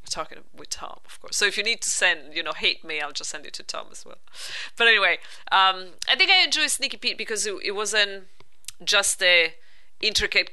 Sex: female